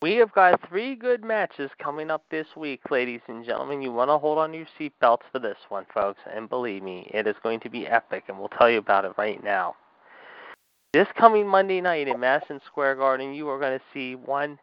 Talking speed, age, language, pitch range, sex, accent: 235 wpm, 30-49, English, 125-155 Hz, male, American